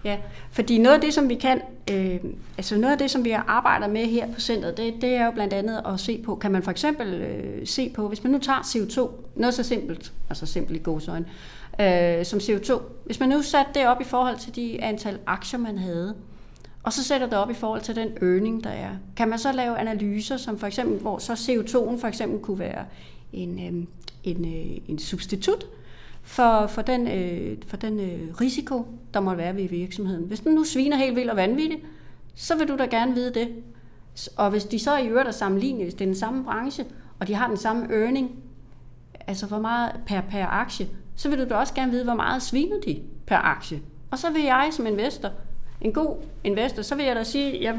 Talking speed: 220 wpm